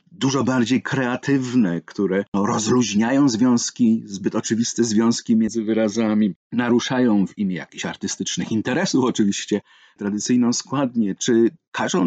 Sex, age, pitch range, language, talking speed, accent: male, 50-69, 100-125 Hz, Polish, 110 wpm, native